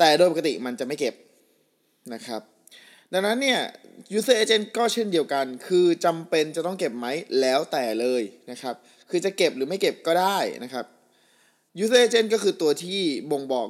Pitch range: 130-180 Hz